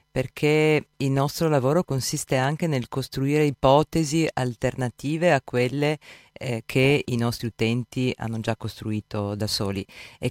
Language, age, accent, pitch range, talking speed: Italian, 40-59, native, 110-130 Hz, 135 wpm